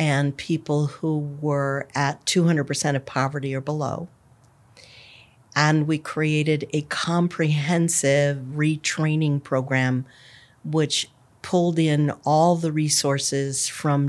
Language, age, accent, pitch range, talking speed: English, 50-69, American, 135-155 Hz, 100 wpm